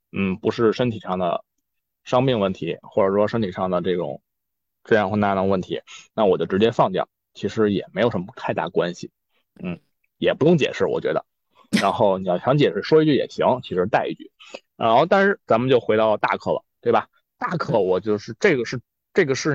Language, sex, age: Chinese, male, 20-39